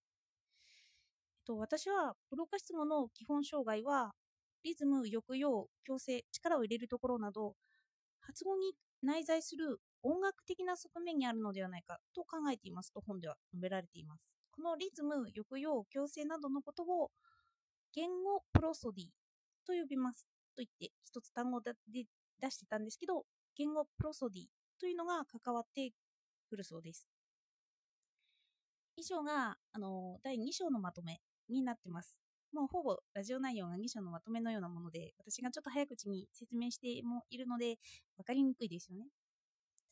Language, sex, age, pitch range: Japanese, female, 20-39, 210-305 Hz